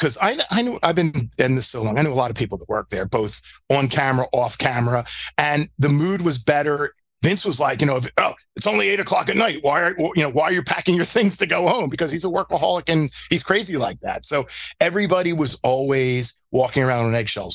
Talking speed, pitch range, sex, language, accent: 245 wpm, 125-160 Hz, male, English, American